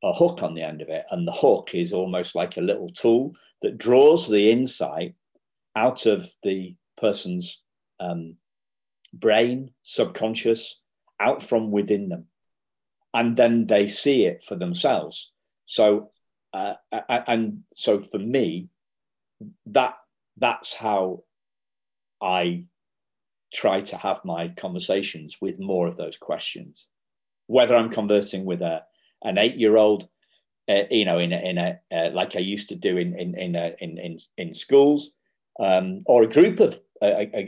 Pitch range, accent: 90-115 Hz, British